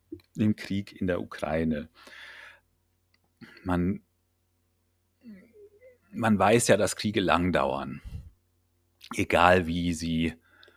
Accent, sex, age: German, male, 40-59